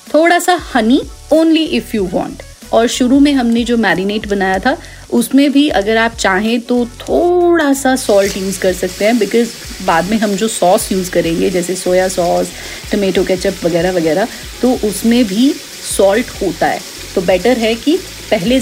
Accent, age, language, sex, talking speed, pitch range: native, 30-49, Hindi, female, 175 wpm, 190-260 Hz